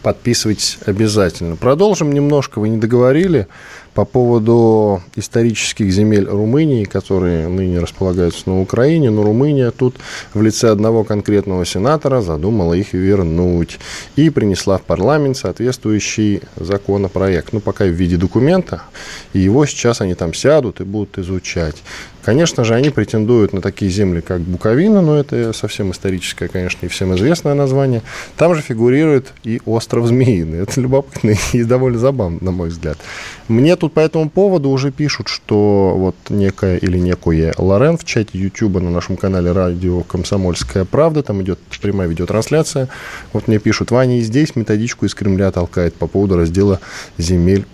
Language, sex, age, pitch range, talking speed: Russian, male, 10-29, 95-130 Hz, 150 wpm